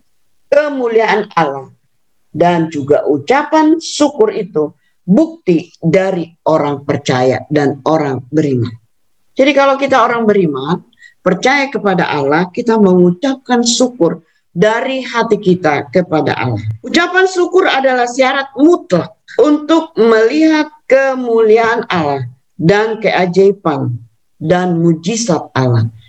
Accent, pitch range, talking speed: native, 160-255 Hz, 100 wpm